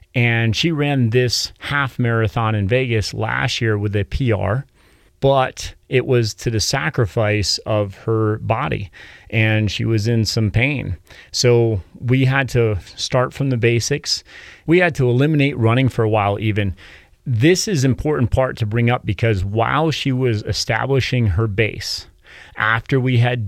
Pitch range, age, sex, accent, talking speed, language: 105-125 Hz, 30-49, male, American, 160 wpm, English